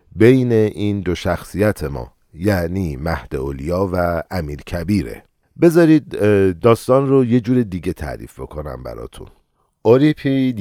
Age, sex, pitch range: 50-69, male, 90-125 Hz